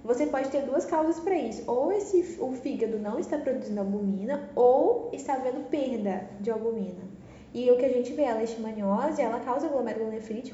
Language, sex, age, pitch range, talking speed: Portuguese, female, 10-29, 235-310 Hz, 180 wpm